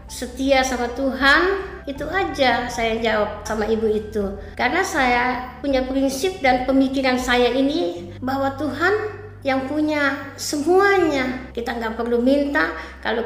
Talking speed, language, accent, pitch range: 125 wpm, Indonesian, American, 230-275 Hz